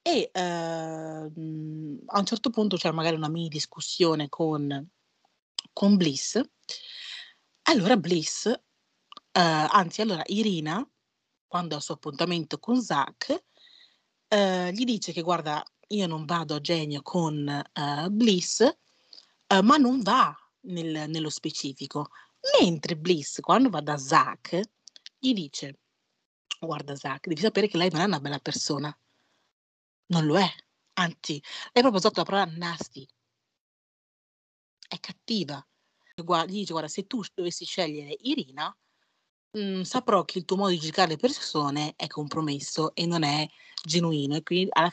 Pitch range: 150-200 Hz